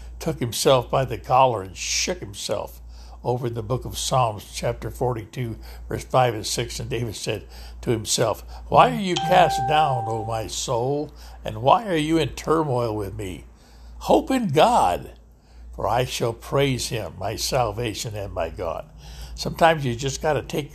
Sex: male